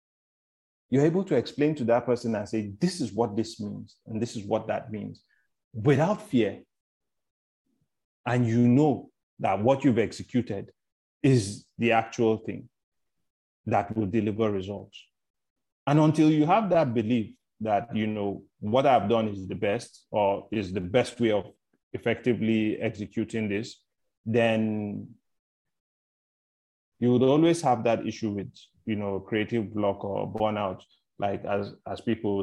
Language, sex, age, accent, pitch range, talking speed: English, male, 30-49, Nigerian, 105-125 Hz, 145 wpm